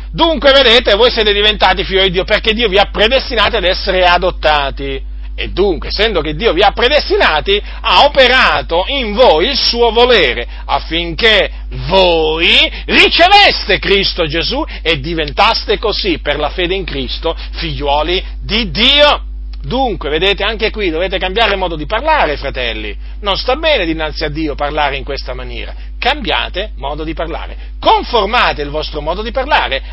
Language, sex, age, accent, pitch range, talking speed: Italian, male, 40-59, native, 155-225 Hz, 155 wpm